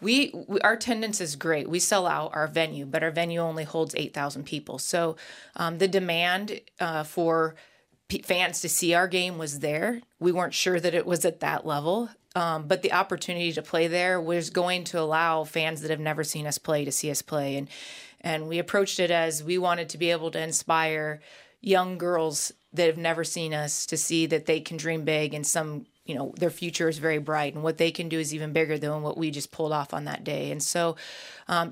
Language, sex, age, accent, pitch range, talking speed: English, female, 20-39, American, 155-175 Hz, 225 wpm